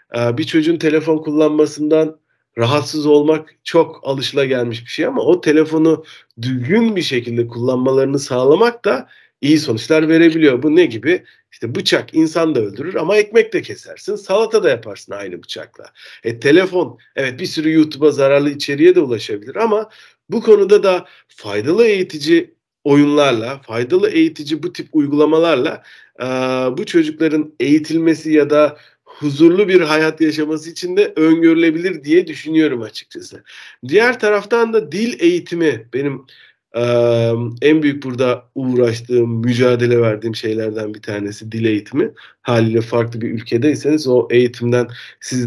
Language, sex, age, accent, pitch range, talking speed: Turkish, male, 50-69, native, 120-185 Hz, 135 wpm